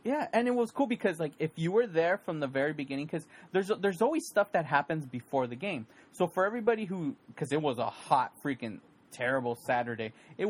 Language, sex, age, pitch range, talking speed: English, male, 20-39, 135-190 Hz, 215 wpm